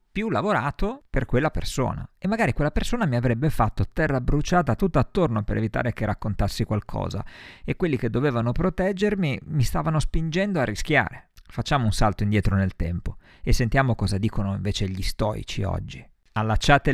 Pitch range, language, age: 95-130 Hz, Italian, 50-69